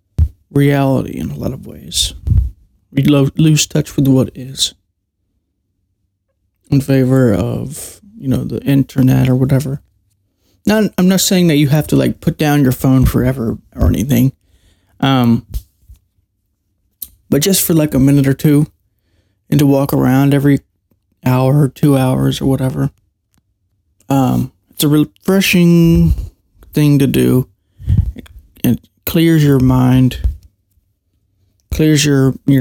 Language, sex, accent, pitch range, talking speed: English, male, American, 90-135 Hz, 130 wpm